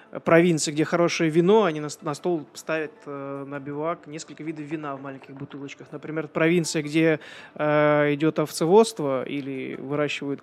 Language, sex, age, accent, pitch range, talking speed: Russian, male, 20-39, native, 145-170 Hz, 130 wpm